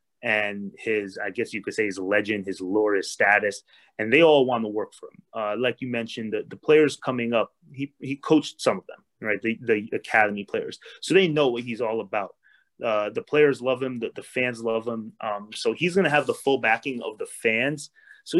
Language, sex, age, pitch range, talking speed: English, male, 30-49, 110-135 Hz, 230 wpm